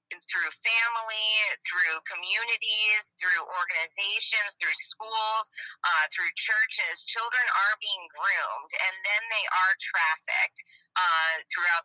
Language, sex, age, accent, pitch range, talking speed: English, female, 20-39, American, 155-190 Hz, 110 wpm